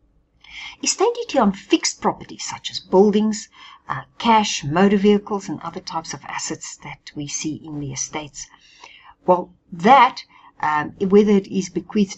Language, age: English, 60-79